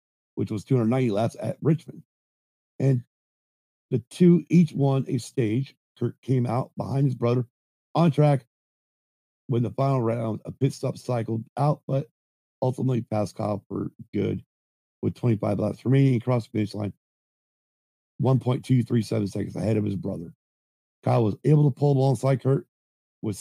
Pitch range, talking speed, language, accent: 105-135 Hz, 150 wpm, English, American